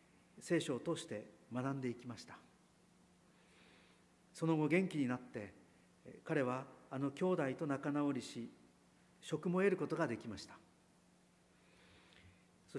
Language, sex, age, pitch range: Japanese, male, 50-69, 120-165 Hz